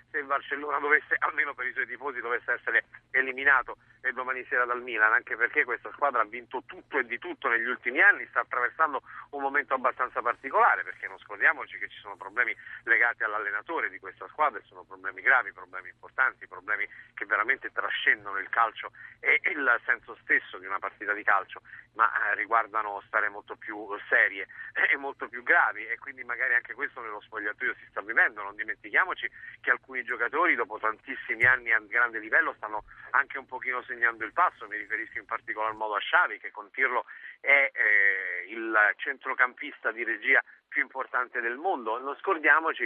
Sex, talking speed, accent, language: male, 180 wpm, native, Italian